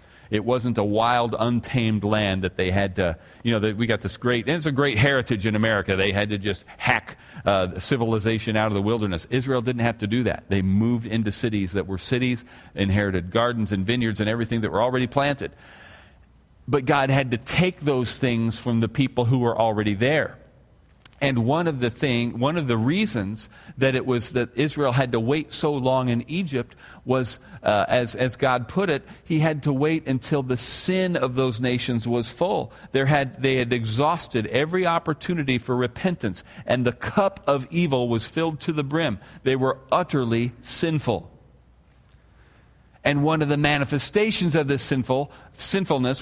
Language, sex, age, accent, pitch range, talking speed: English, male, 40-59, American, 115-145 Hz, 185 wpm